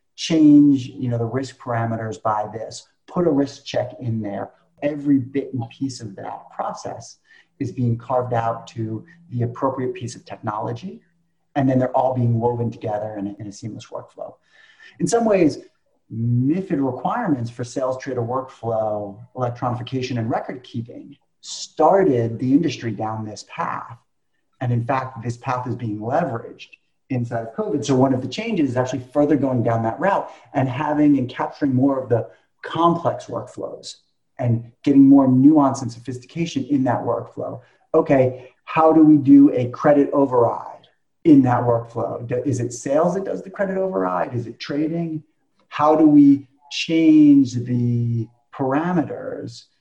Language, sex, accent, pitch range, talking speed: English, male, American, 120-145 Hz, 160 wpm